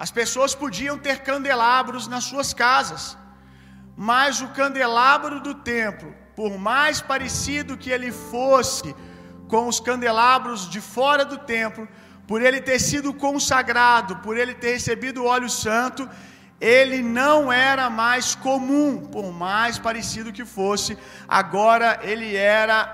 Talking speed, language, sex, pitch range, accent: 135 wpm, Gujarati, male, 210-260 Hz, Brazilian